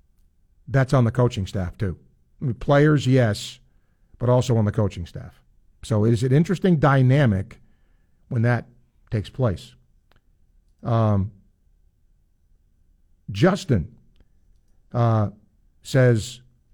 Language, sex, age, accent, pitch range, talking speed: English, male, 50-69, American, 95-145 Hz, 100 wpm